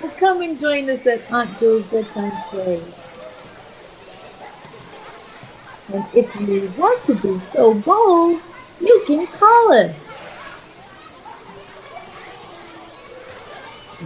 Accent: American